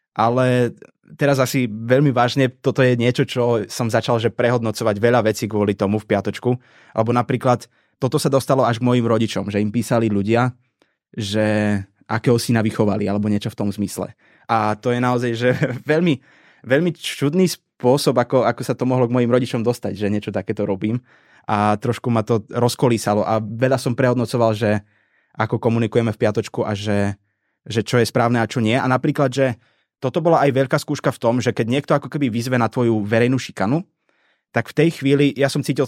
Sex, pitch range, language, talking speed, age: male, 110-135 Hz, Slovak, 190 wpm, 20-39